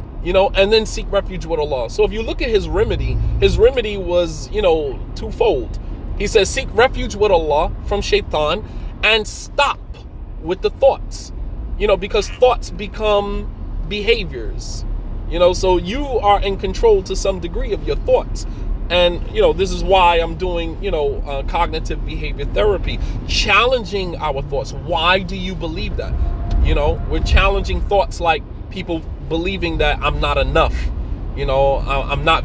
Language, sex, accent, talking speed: English, male, American, 170 wpm